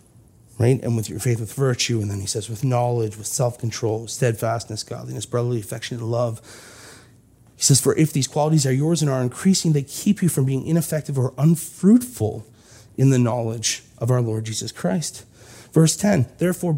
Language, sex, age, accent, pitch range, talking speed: English, male, 30-49, American, 115-140 Hz, 175 wpm